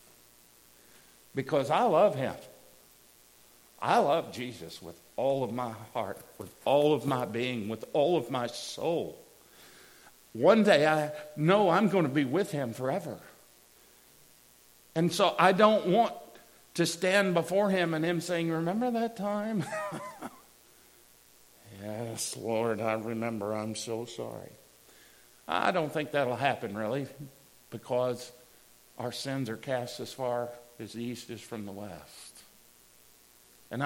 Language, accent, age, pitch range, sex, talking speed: English, American, 50-69, 115-170 Hz, male, 135 wpm